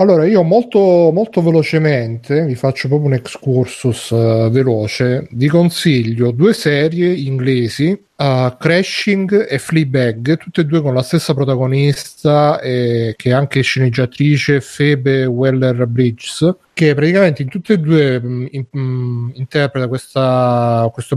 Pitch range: 125-150 Hz